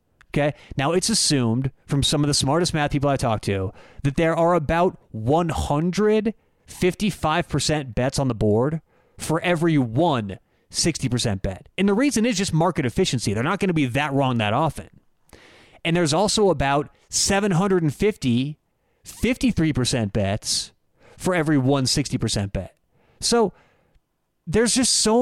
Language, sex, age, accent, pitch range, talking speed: English, male, 30-49, American, 135-195 Hz, 145 wpm